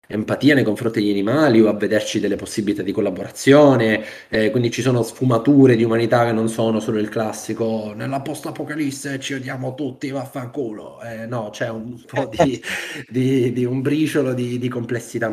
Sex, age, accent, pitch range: male, 20-39, native, 110-130 Hz